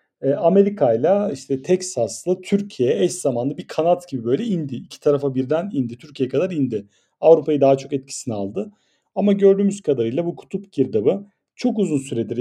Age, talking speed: 40-59, 155 wpm